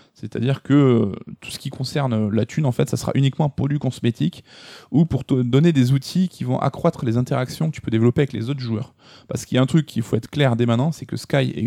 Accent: French